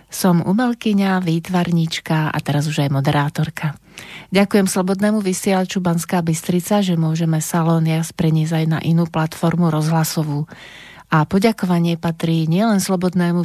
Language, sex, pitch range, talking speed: Slovak, female, 160-190 Hz, 120 wpm